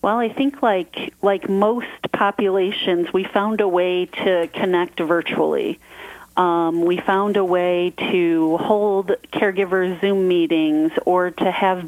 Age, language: 30-49, English